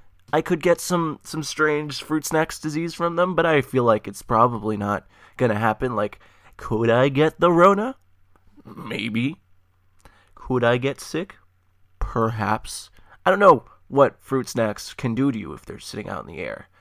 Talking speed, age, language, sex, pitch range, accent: 180 wpm, 20-39, English, male, 110-150 Hz, American